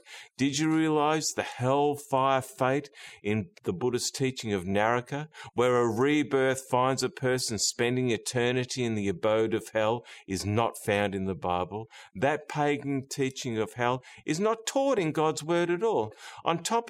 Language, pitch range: English, 110-155 Hz